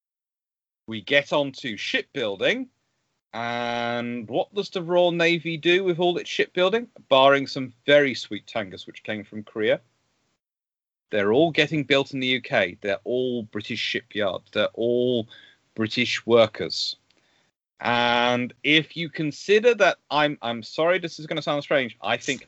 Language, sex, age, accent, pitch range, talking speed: English, male, 40-59, British, 115-150 Hz, 150 wpm